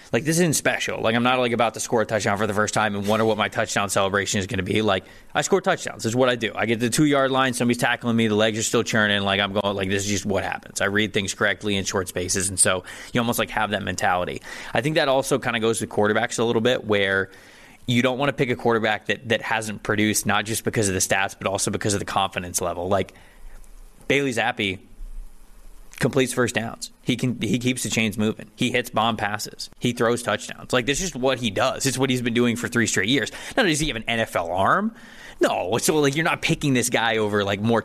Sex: male